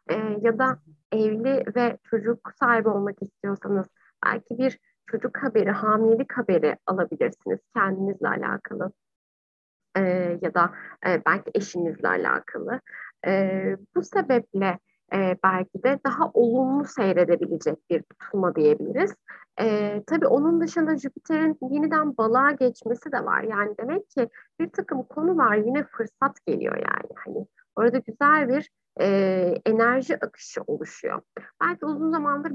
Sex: female